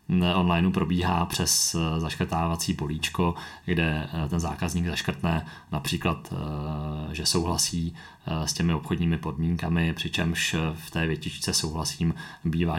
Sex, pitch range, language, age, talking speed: male, 80-90 Hz, Czech, 30-49, 105 wpm